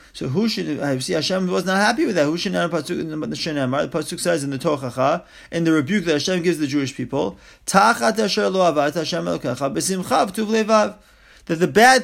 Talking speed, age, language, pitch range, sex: 155 wpm, 30-49, English, 155-200 Hz, male